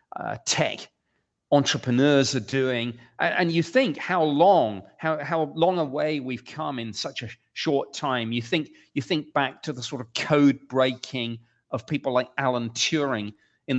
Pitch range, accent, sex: 125-155 Hz, British, male